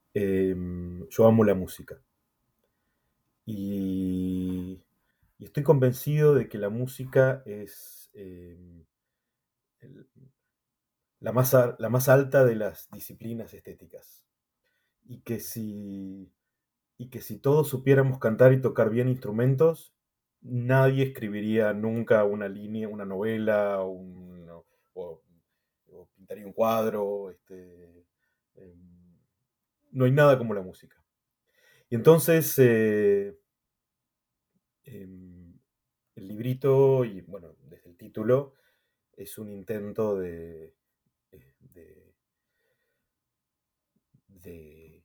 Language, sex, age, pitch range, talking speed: Spanish, male, 30-49, 95-125 Hz, 105 wpm